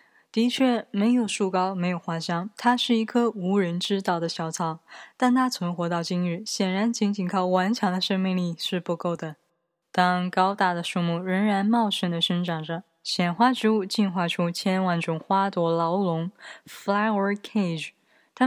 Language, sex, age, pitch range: Chinese, female, 20-39, 175-215 Hz